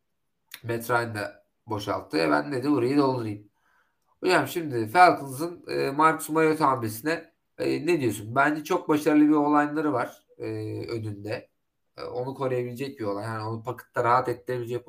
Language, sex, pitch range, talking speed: Turkish, male, 110-145 Hz, 140 wpm